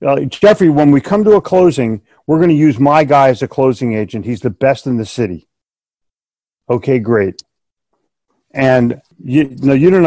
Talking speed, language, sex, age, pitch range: 185 wpm, English, male, 50-69, 125-170 Hz